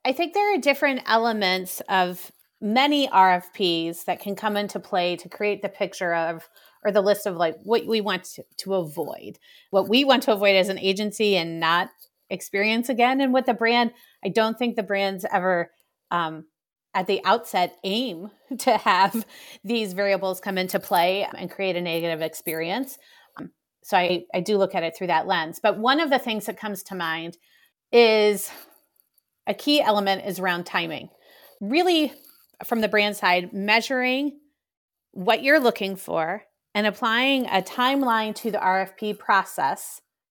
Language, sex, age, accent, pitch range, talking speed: English, female, 30-49, American, 180-230 Hz, 170 wpm